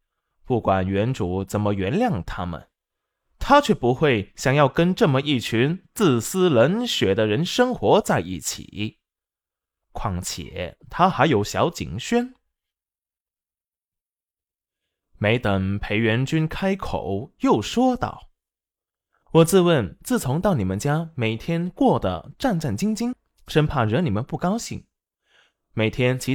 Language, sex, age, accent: Chinese, male, 20-39, native